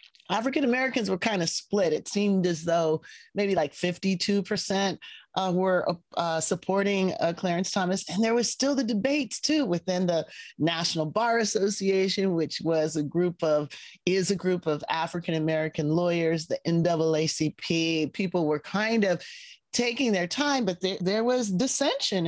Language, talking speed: English, 150 wpm